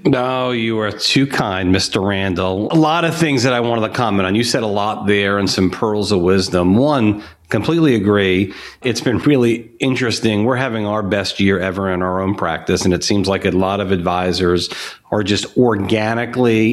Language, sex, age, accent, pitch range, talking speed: English, male, 40-59, American, 95-115 Hz, 195 wpm